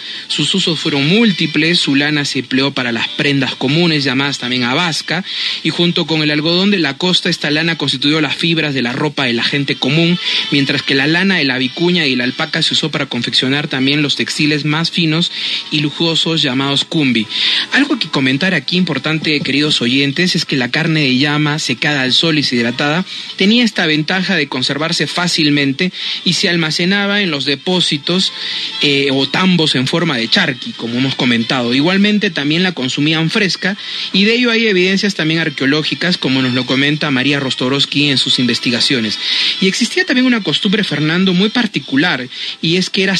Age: 30-49